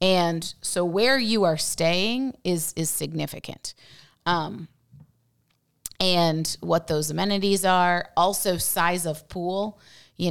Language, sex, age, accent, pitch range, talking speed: English, female, 30-49, American, 155-180 Hz, 115 wpm